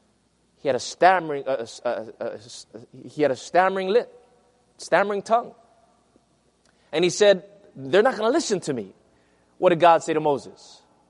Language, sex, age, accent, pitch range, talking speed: English, male, 30-49, American, 145-210 Hz, 155 wpm